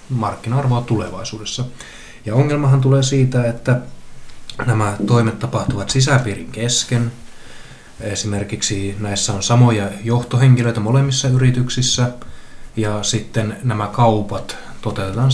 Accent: native